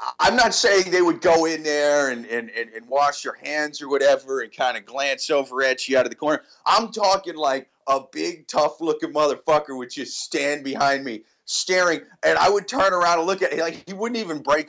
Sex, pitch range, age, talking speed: male, 125-165 Hz, 40-59, 225 wpm